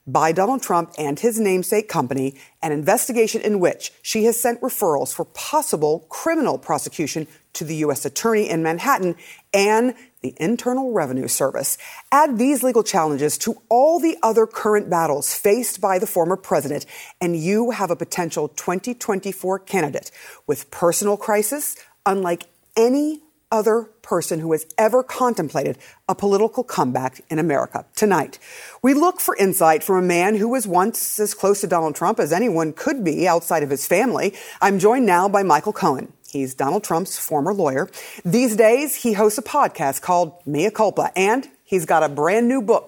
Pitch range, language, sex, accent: 165-235 Hz, English, female, American